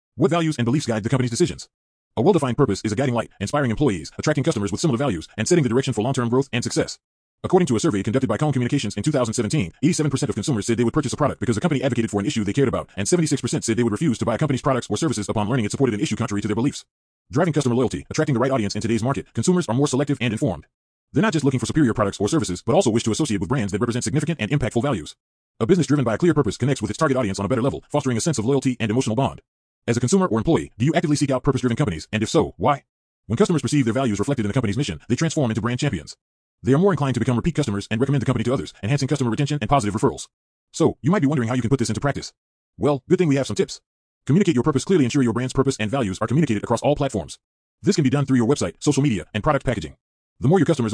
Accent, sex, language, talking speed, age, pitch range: American, male, English, 290 wpm, 30-49, 110-145 Hz